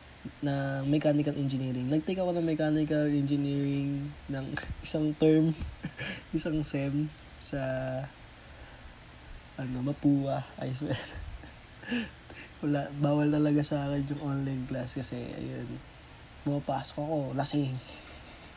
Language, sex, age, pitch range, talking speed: Filipino, male, 20-39, 130-150 Hz, 105 wpm